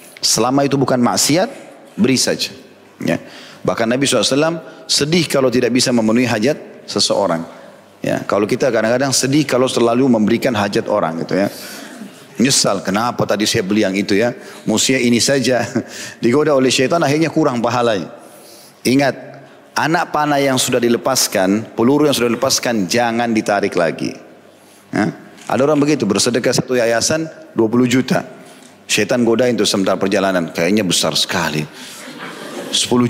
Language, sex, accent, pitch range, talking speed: Indonesian, male, native, 115-155 Hz, 140 wpm